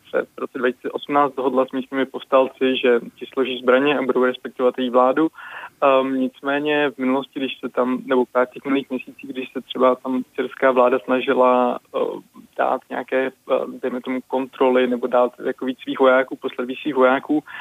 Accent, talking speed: native, 175 wpm